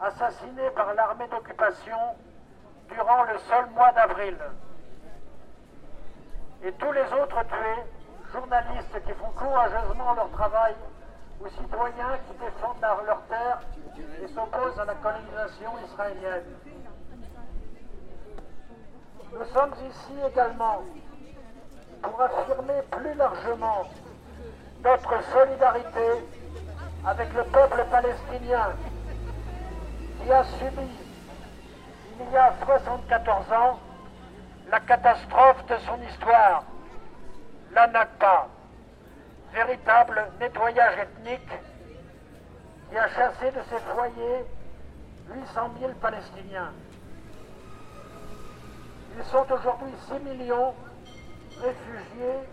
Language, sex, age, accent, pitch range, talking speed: French, male, 60-79, French, 215-255 Hz, 90 wpm